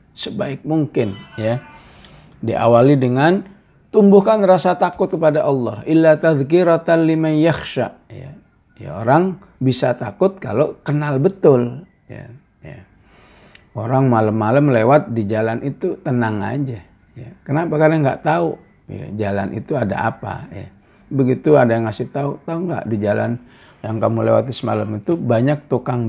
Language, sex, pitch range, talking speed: English, male, 115-155 Hz, 130 wpm